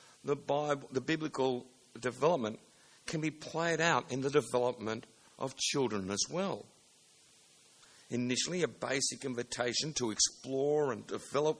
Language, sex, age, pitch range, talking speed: English, male, 60-79, 120-150 Hz, 125 wpm